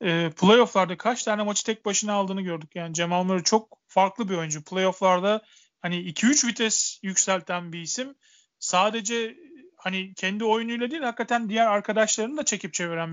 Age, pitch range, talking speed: 40-59, 185-225 Hz, 145 wpm